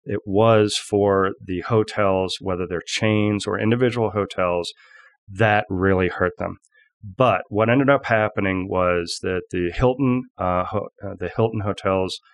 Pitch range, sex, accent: 95-115 Hz, male, American